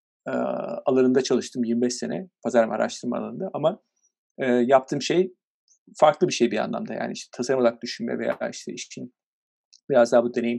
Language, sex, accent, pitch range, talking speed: Turkish, male, native, 125-165 Hz, 155 wpm